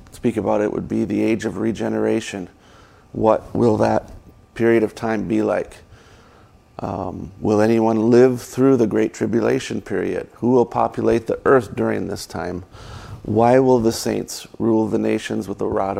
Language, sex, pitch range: English, male, 110-120 Hz